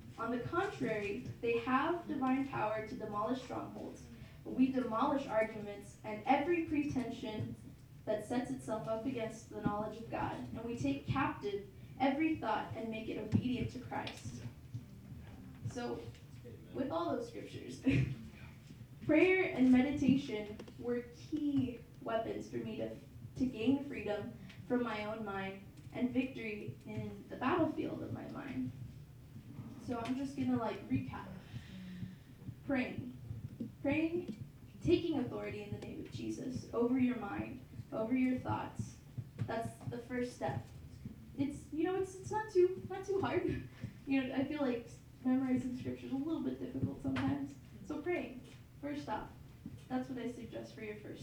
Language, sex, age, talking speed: English, female, 10-29, 145 wpm